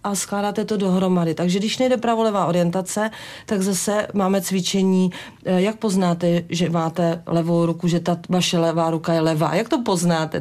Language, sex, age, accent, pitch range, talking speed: Czech, female, 40-59, native, 170-190 Hz, 175 wpm